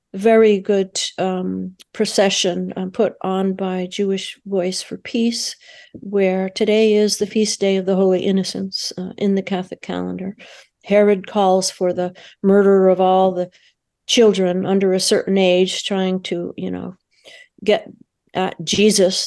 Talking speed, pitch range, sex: 145 wpm, 185-215 Hz, female